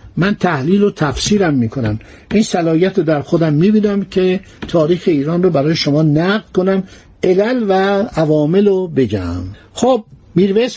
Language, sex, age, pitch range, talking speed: Persian, male, 60-79, 165-215 Hz, 145 wpm